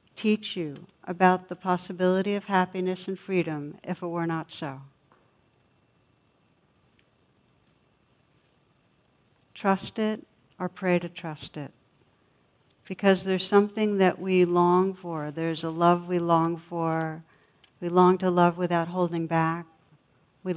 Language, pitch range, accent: English, 165-185 Hz, American